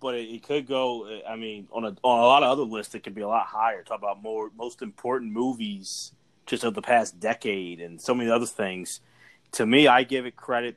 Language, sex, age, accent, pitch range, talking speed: English, male, 30-49, American, 110-130 Hz, 235 wpm